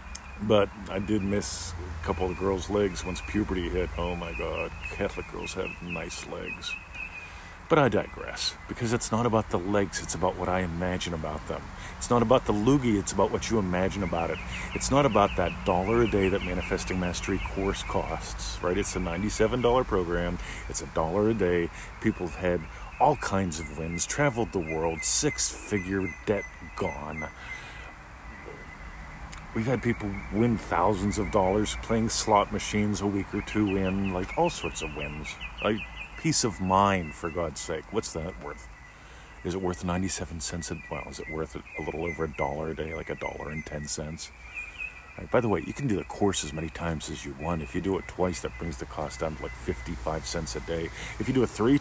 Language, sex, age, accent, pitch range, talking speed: English, male, 40-59, American, 80-100 Hz, 200 wpm